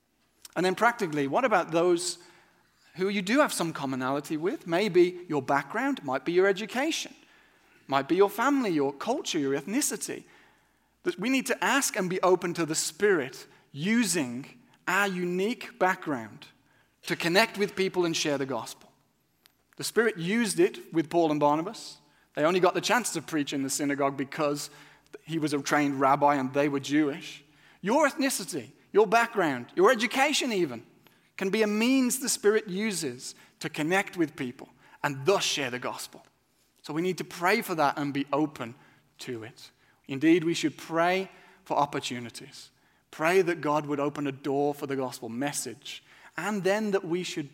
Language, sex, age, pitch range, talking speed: English, male, 40-59, 145-200 Hz, 170 wpm